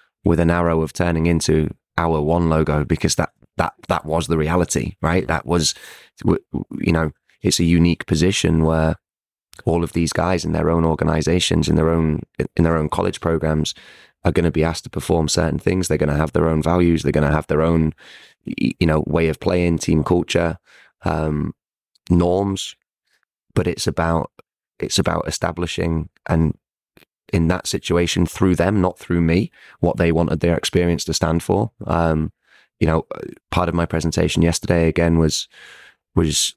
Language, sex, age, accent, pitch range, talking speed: English, male, 20-39, British, 80-85 Hz, 175 wpm